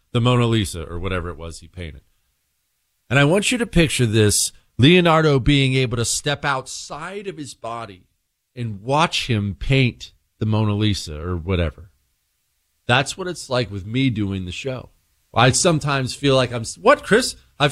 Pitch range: 95-145 Hz